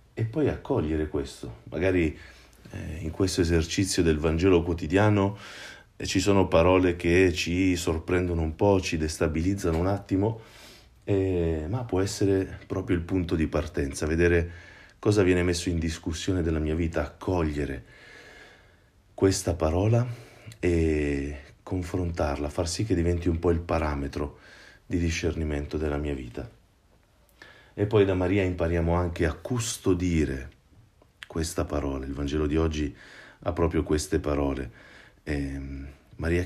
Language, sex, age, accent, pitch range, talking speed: Italian, male, 40-59, native, 80-95 Hz, 130 wpm